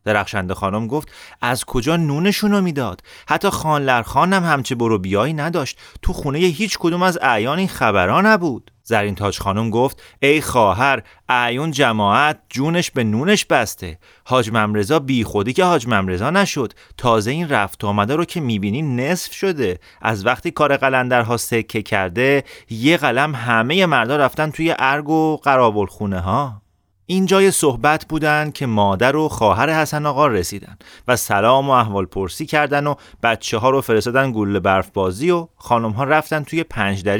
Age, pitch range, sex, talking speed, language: 30-49, 105-155 Hz, male, 160 wpm, Persian